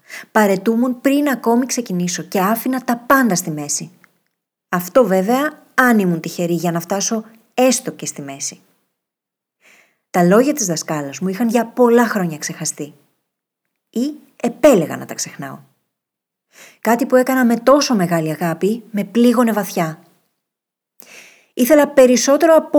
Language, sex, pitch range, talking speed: Greek, female, 175-255 Hz, 130 wpm